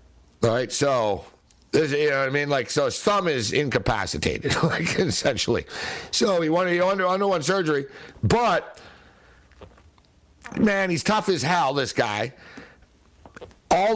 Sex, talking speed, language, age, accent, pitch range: male, 140 wpm, English, 60-79, American, 140-175 Hz